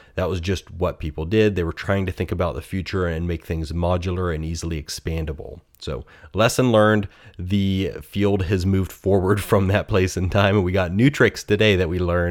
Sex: male